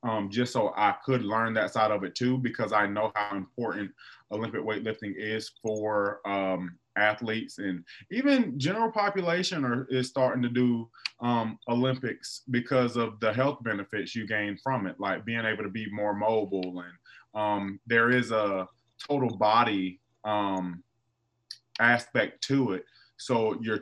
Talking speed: 155 wpm